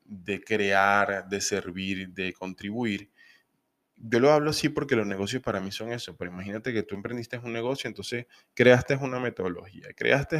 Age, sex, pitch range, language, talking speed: 20-39, male, 100-140 Hz, Spanish, 165 wpm